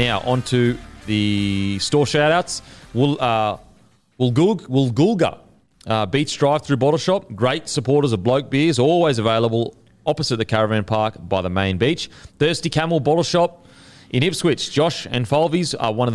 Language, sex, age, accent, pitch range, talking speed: English, male, 30-49, Australian, 115-160 Hz, 165 wpm